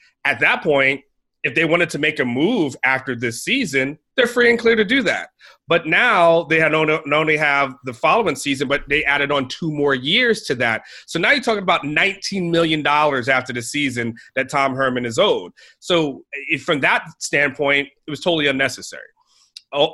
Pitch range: 140-180 Hz